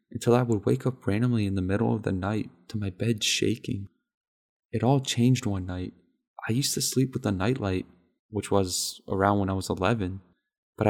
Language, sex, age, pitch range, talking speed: English, male, 20-39, 100-120 Hz, 200 wpm